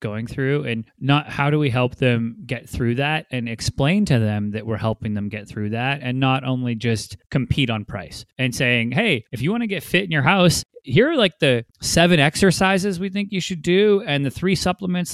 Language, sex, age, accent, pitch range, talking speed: English, male, 20-39, American, 120-160 Hz, 225 wpm